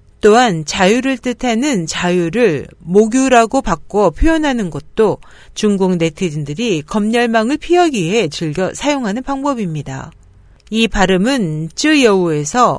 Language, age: Korean, 40-59